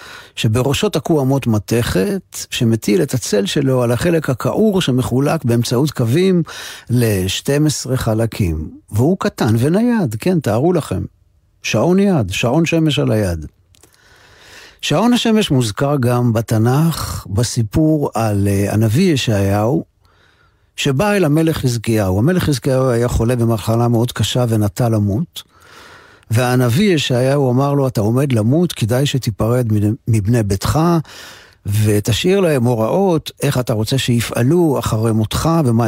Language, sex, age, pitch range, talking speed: Hebrew, male, 50-69, 110-140 Hz, 120 wpm